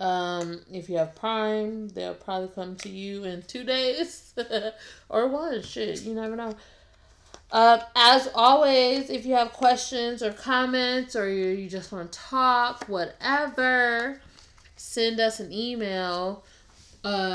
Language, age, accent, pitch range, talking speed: English, 20-39, American, 185-235 Hz, 140 wpm